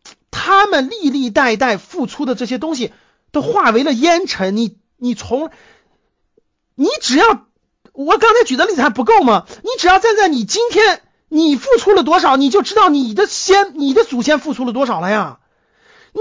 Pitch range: 265-395 Hz